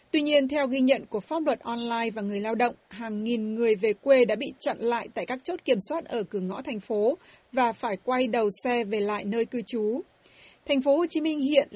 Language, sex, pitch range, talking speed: Vietnamese, female, 220-270 Hz, 245 wpm